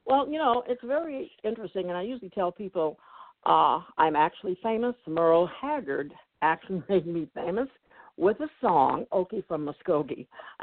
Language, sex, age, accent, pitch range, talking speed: English, female, 60-79, American, 170-240 Hz, 150 wpm